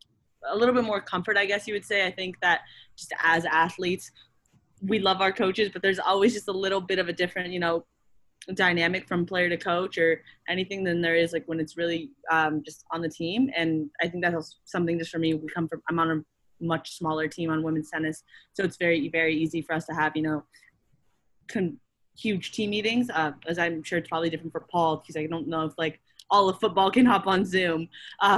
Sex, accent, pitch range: female, American, 170-195 Hz